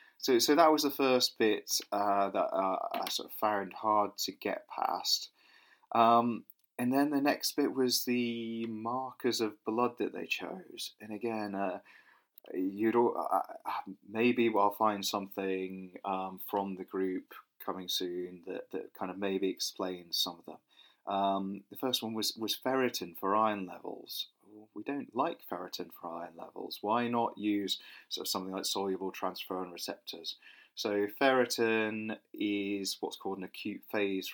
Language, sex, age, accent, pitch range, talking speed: English, male, 30-49, British, 95-115 Hz, 155 wpm